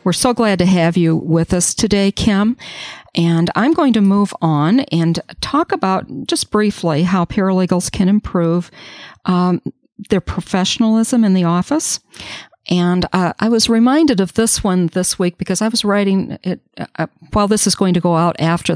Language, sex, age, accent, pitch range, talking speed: English, female, 50-69, American, 165-200 Hz, 180 wpm